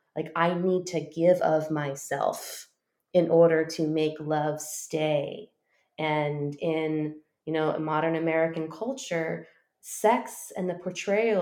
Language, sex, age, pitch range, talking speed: English, female, 20-39, 155-180 Hz, 125 wpm